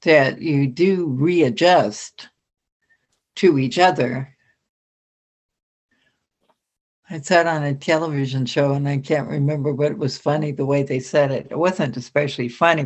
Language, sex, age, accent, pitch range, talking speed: English, female, 60-79, American, 140-180 Hz, 140 wpm